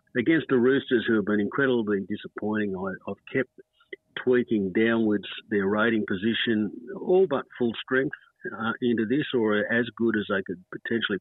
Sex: male